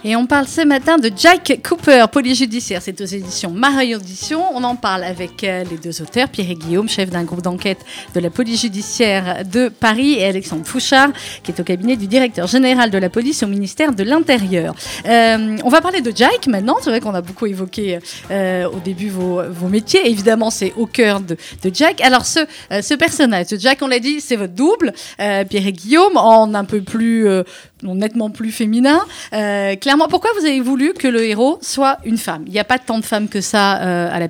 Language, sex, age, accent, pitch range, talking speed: French, female, 40-59, French, 190-260 Hz, 220 wpm